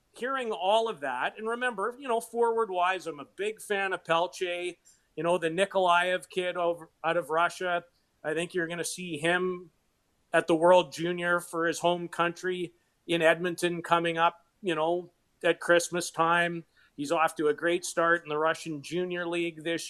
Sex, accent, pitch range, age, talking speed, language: male, American, 165-185 Hz, 40-59, 180 wpm, English